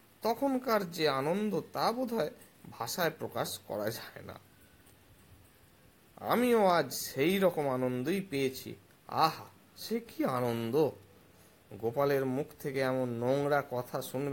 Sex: male